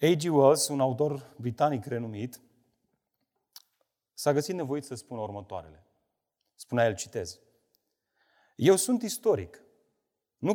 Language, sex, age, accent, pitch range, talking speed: Romanian, male, 30-49, native, 135-220 Hz, 110 wpm